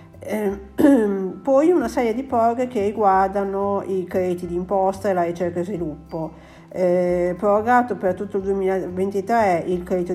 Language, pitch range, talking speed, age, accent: Italian, 170-195 Hz, 140 wpm, 50-69, native